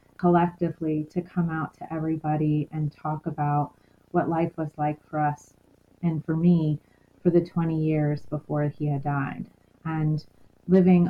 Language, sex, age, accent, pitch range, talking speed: English, female, 30-49, American, 150-175 Hz, 150 wpm